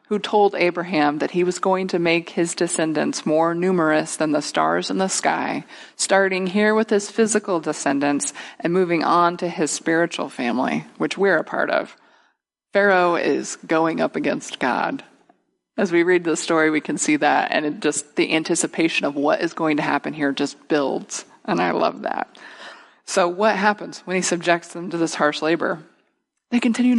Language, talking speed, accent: English, 180 wpm, American